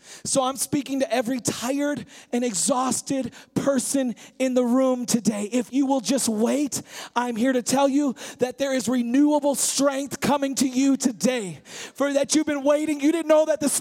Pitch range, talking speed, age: 260-305 Hz, 185 wpm, 30-49